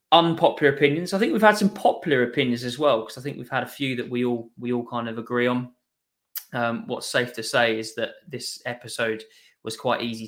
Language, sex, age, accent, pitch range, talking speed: English, male, 20-39, British, 115-125 Hz, 230 wpm